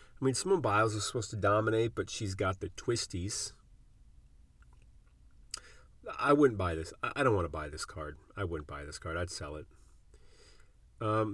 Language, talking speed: English, 175 wpm